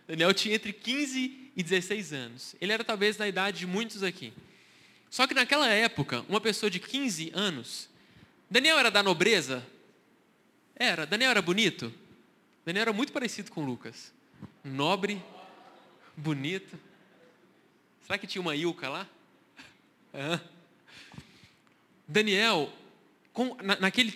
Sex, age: male, 20-39